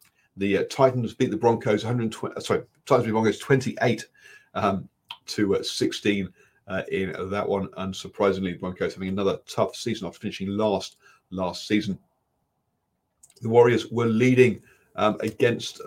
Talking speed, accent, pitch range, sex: 150 wpm, British, 95-120 Hz, male